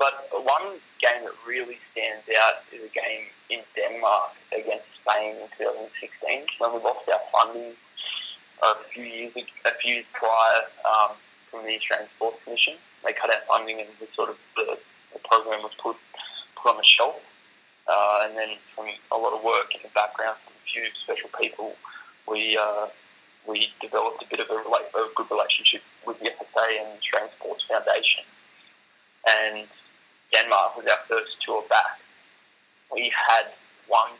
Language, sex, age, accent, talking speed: English, male, 20-39, Australian, 170 wpm